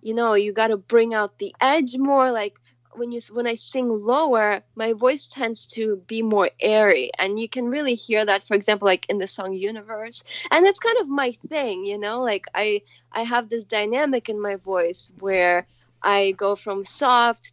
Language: English